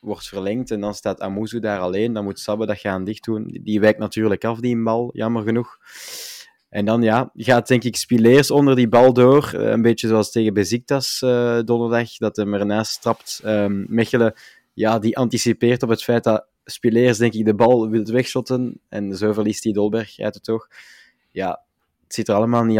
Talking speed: 190 wpm